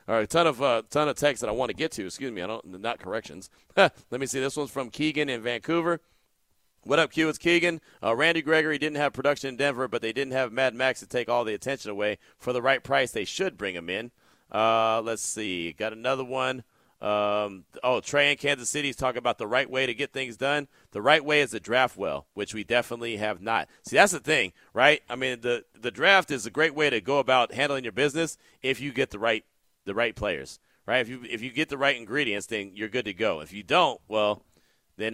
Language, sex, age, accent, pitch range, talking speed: English, male, 40-59, American, 115-140 Hz, 245 wpm